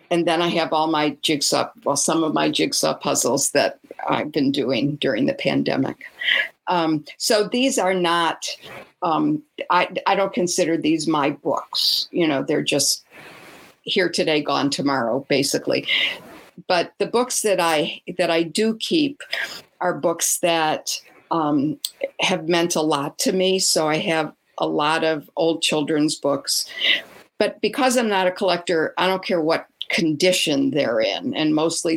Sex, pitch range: female, 160-220 Hz